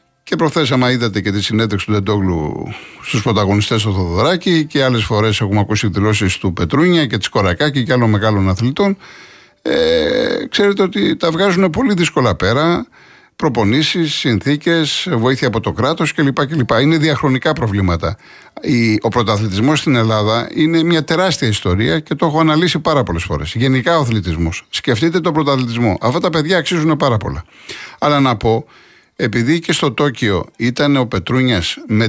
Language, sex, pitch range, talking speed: Greek, male, 110-160 Hz, 155 wpm